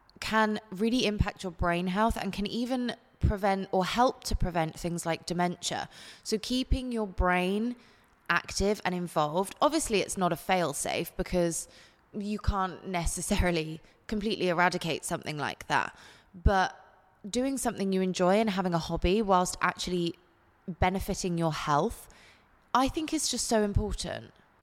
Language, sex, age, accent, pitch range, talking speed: English, female, 20-39, British, 175-215 Hz, 145 wpm